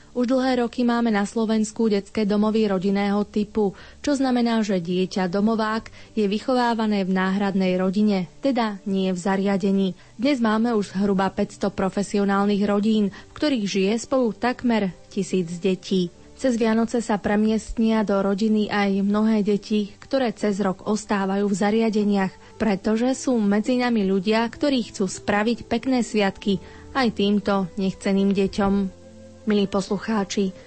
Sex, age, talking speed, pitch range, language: female, 30-49, 135 wpm, 195-225 Hz, Slovak